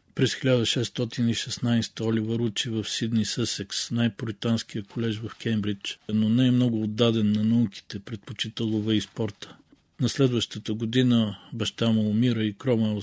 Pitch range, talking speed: 105-120 Hz, 130 wpm